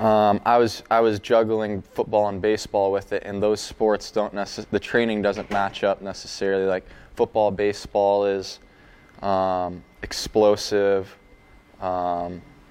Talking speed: 135 wpm